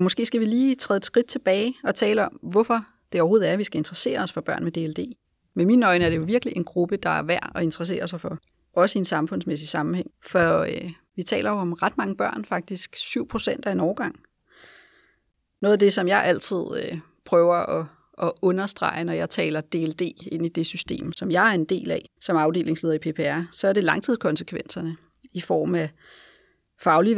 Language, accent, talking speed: Danish, native, 215 wpm